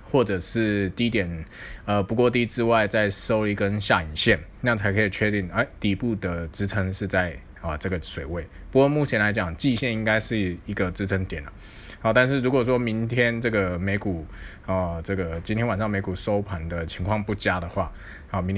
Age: 20-39